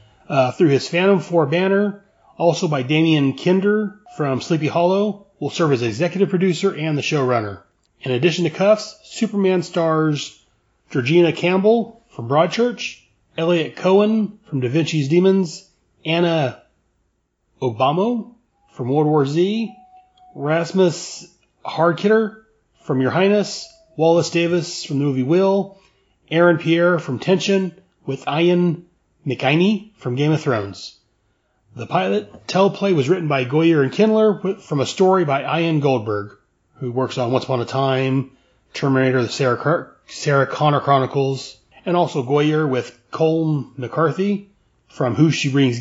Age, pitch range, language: 30-49, 130-185 Hz, English